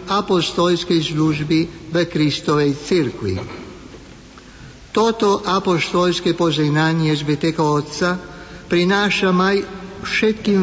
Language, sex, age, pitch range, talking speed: Slovak, male, 60-79, 160-185 Hz, 70 wpm